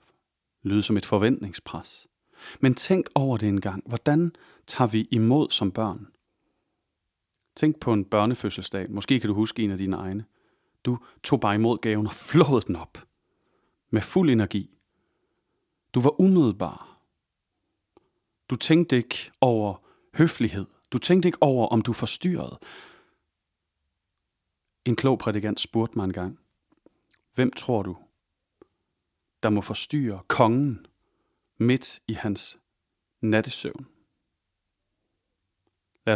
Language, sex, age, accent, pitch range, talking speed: English, male, 40-59, Danish, 100-125 Hz, 120 wpm